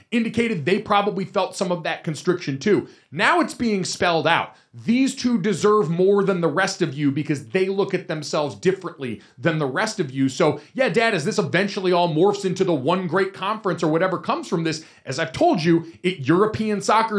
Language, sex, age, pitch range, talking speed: English, male, 30-49, 155-210 Hz, 205 wpm